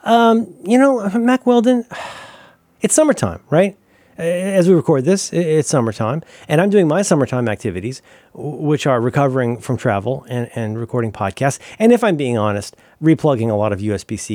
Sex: male